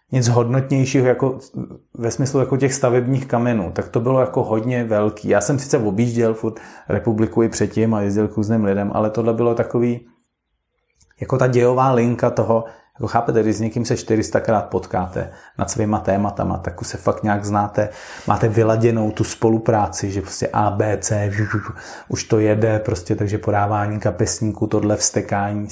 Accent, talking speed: native, 165 wpm